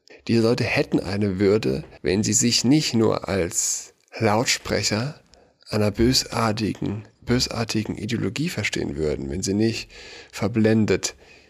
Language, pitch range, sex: German, 95-120 Hz, male